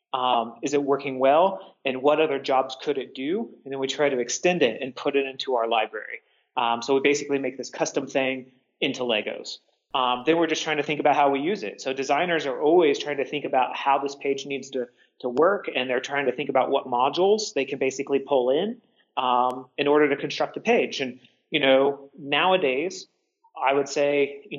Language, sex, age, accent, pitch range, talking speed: English, male, 30-49, American, 135-160 Hz, 220 wpm